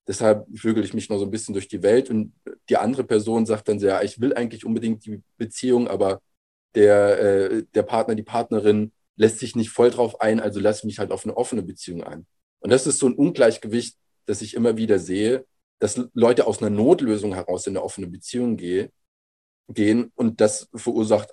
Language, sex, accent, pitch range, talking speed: German, male, German, 100-125 Hz, 200 wpm